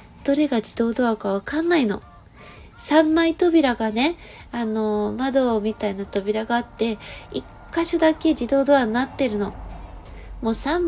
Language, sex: Japanese, female